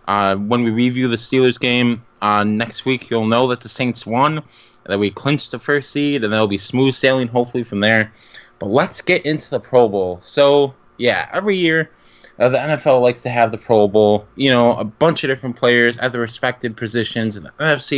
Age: 20-39